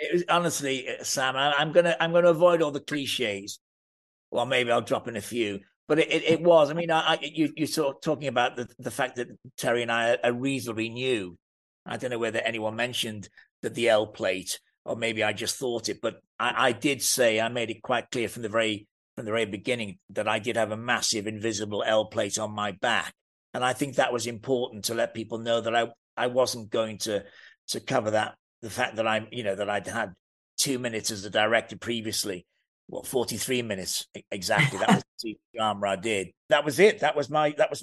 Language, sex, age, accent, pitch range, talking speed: English, male, 40-59, British, 115-155 Hz, 225 wpm